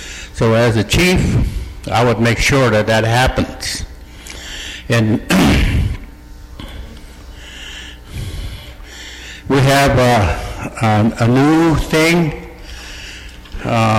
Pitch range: 85-125 Hz